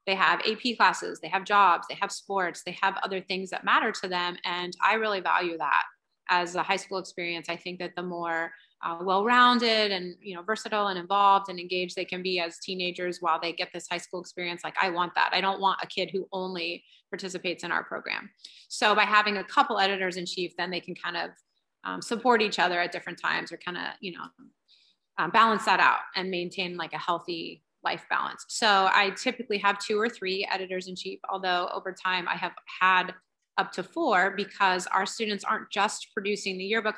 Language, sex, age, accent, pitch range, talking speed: English, female, 30-49, American, 175-205 Hz, 215 wpm